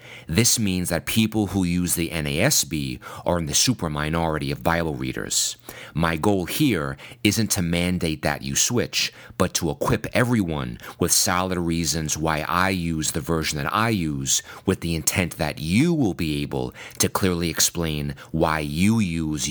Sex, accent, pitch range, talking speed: male, American, 80-95 Hz, 165 wpm